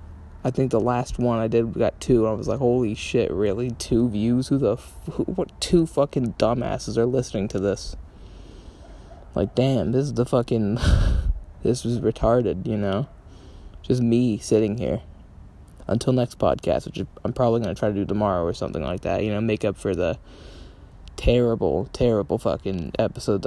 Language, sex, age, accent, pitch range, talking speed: English, male, 20-39, American, 100-125 Hz, 185 wpm